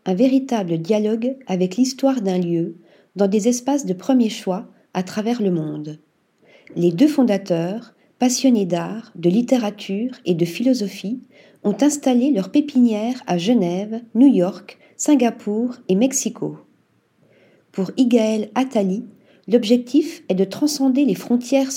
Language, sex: French, female